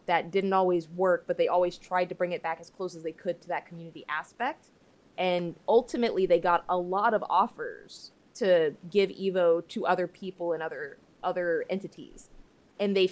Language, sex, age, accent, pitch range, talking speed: English, female, 20-39, American, 170-195 Hz, 190 wpm